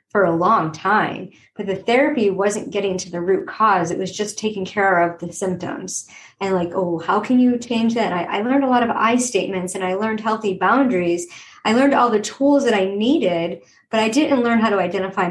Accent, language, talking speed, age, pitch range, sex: American, English, 225 wpm, 30-49, 175-210 Hz, male